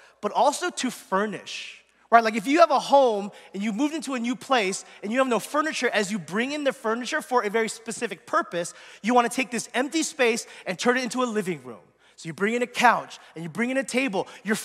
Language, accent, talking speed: English, American, 245 wpm